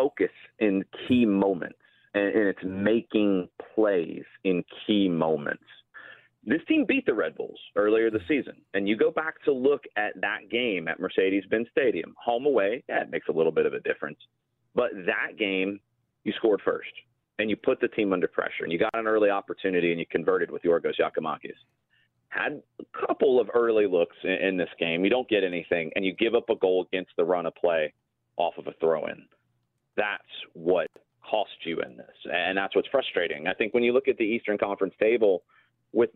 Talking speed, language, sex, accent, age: 195 wpm, English, male, American, 30-49